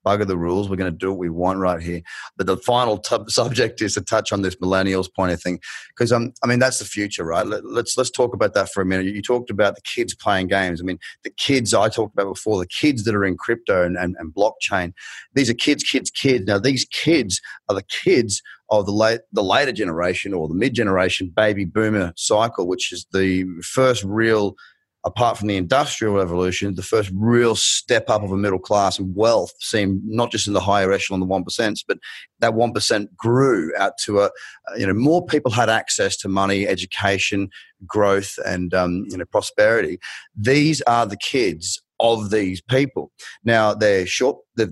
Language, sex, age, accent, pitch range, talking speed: English, male, 30-49, Australian, 95-120 Hz, 205 wpm